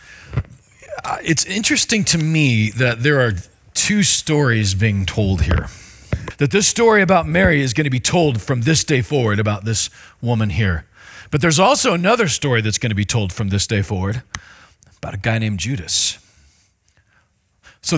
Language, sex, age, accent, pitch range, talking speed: English, male, 40-59, American, 110-165 Hz, 170 wpm